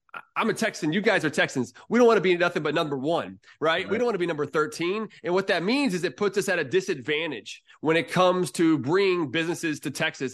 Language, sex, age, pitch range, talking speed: English, male, 30-49, 145-185 Hz, 250 wpm